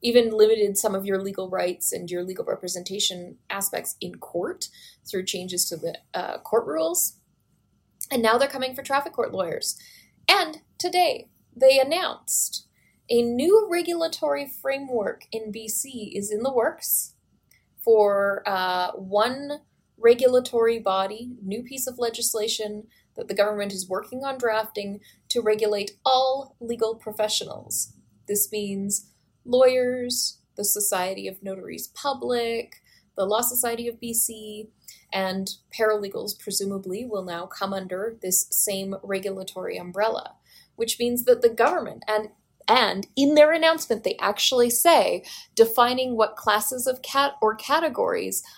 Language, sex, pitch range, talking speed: English, female, 195-260 Hz, 135 wpm